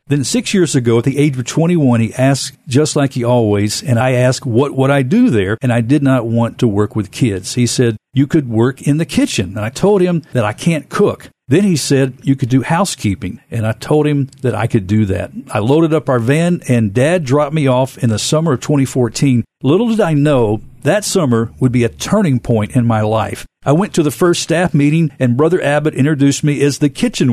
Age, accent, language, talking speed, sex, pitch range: 50-69, American, English, 235 wpm, male, 120-155 Hz